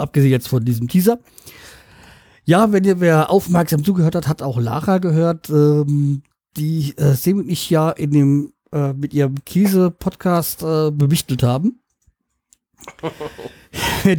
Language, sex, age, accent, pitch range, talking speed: German, male, 50-69, German, 135-165 Hz, 135 wpm